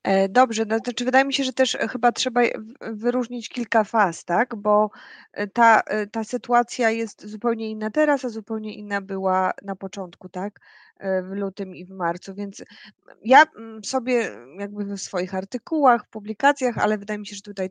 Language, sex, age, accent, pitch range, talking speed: Polish, female, 20-39, native, 205-245 Hz, 165 wpm